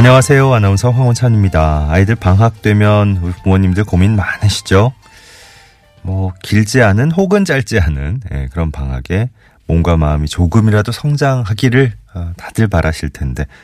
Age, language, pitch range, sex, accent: 30-49, Korean, 80-115 Hz, male, native